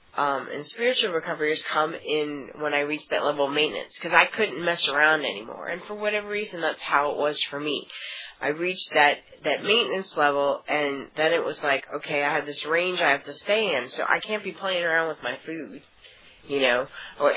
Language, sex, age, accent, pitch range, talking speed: English, female, 30-49, American, 140-165 Hz, 220 wpm